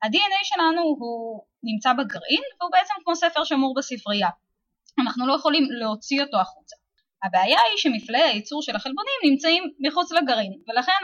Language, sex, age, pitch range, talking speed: Hebrew, female, 20-39, 210-310 Hz, 145 wpm